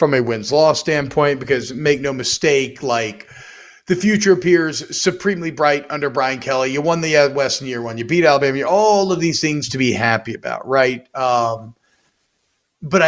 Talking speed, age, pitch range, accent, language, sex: 180 wpm, 40-59, 125-145 Hz, American, English, male